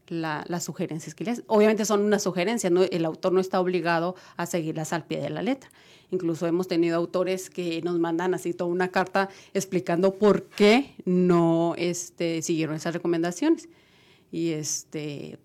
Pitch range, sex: 170-200 Hz, female